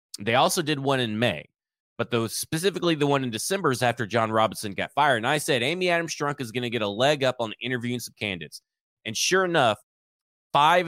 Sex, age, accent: male, 30-49, American